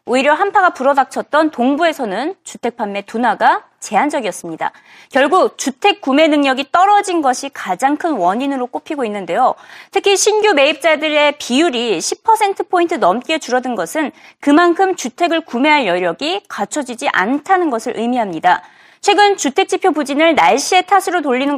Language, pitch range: Korean, 235-340 Hz